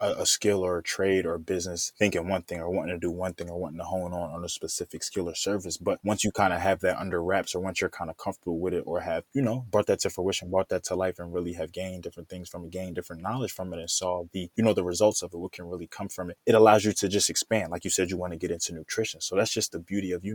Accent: American